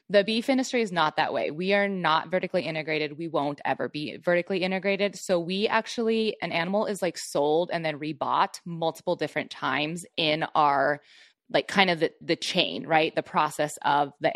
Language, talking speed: English, 190 wpm